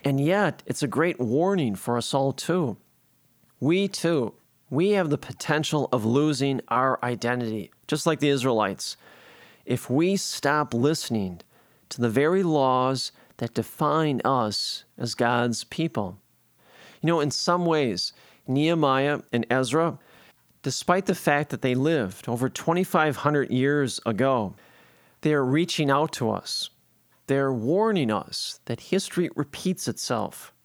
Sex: male